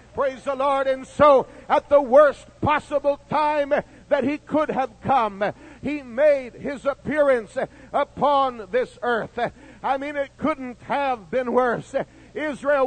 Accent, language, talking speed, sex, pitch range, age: American, English, 140 wpm, male, 260-305 Hz, 60-79